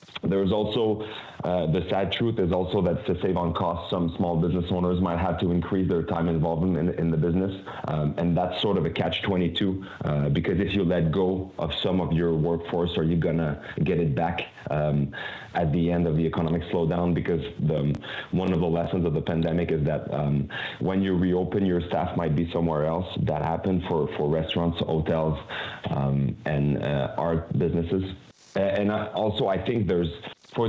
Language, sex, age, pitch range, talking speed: English, male, 30-49, 80-95 Hz, 200 wpm